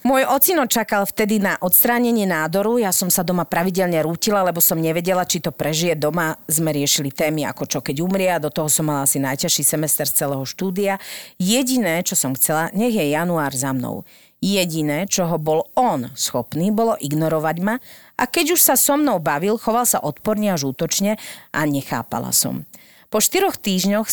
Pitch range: 160-215 Hz